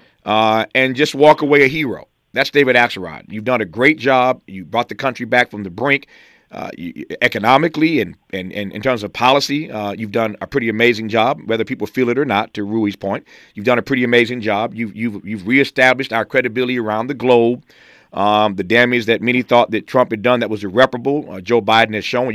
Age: 40-59